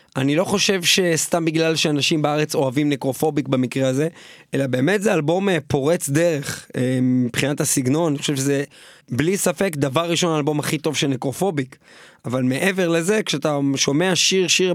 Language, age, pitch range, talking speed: Hebrew, 20-39, 145-185 Hz, 150 wpm